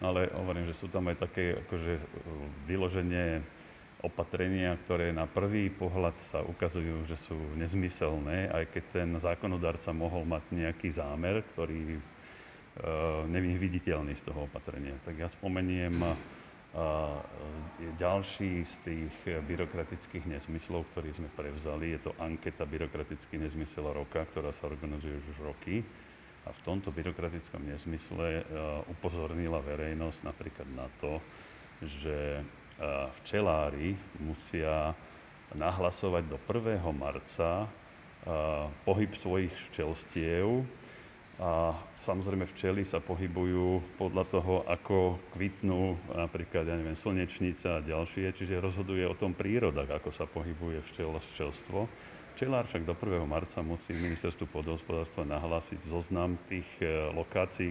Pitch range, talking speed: 80-95 Hz, 120 wpm